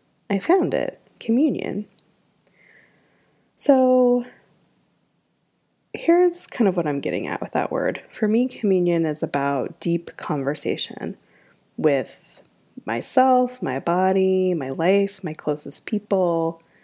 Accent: American